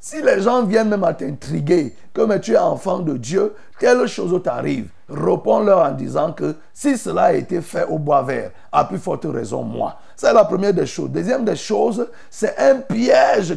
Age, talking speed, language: 50-69, 200 wpm, French